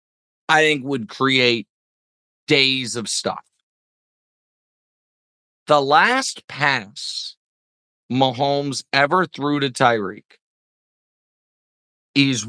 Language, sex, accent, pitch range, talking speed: English, male, American, 125-160 Hz, 75 wpm